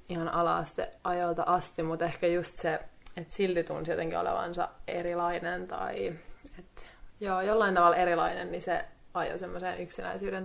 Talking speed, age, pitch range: 145 wpm, 20-39, 170-185 Hz